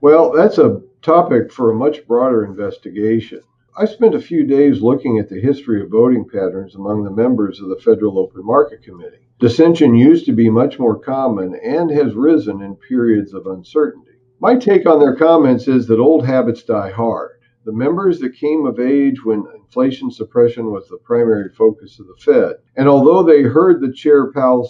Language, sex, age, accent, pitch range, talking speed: English, male, 50-69, American, 110-150 Hz, 190 wpm